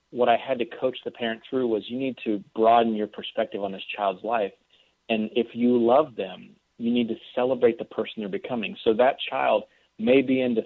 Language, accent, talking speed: English, American, 215 wpm